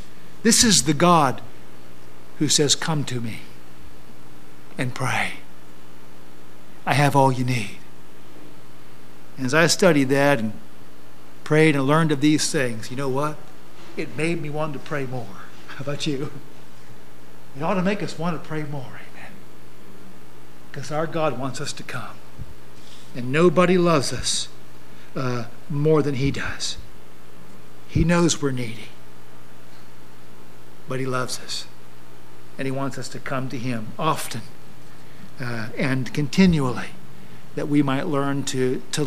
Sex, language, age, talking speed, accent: male, English, 50-69, 145 wpm, American